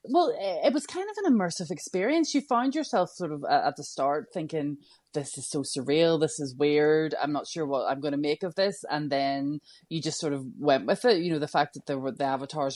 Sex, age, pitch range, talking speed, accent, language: female, 20-39, 140-170 Hz, 240 wpm, Irish, English